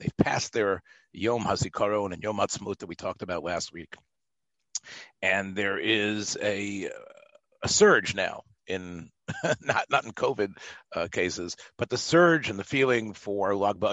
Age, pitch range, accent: 50-69, 90-125 Hz, American